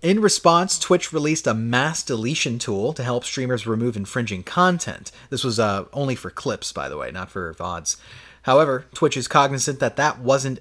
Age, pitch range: 30-49, 120-170 Hz